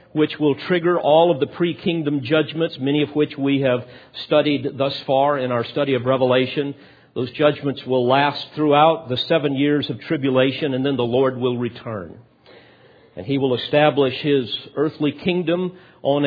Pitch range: 125-160 Hz